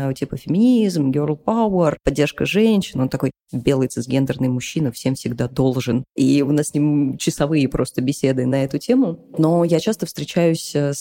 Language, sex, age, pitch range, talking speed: Russian, female, 20-39, 140-170 Hz, 160 wpm